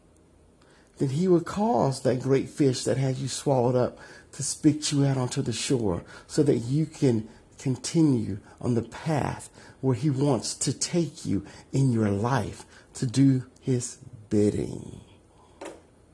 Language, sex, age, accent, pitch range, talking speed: English, male, 50-69, American, 115-155 Hz, 150 wpm